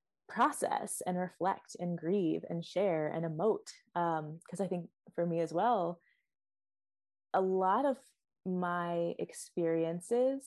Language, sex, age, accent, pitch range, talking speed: English, female, 20-39, American, 165-205 Hz, 125 wpm